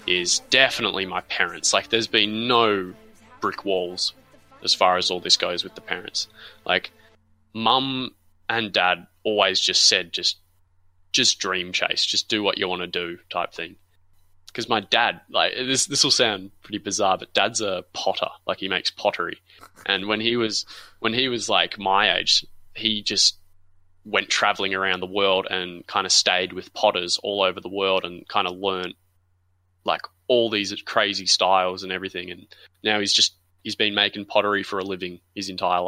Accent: Australian